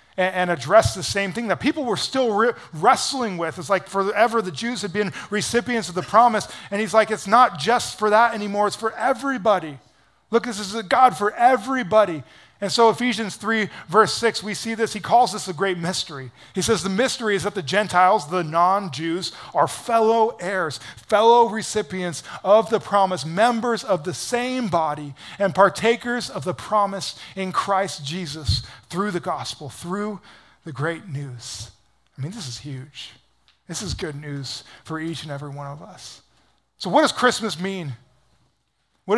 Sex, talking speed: male, 180 wpm